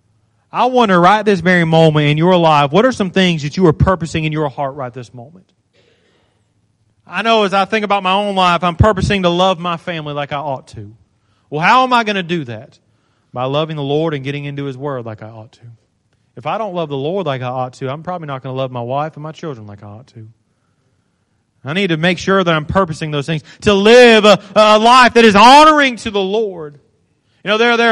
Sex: male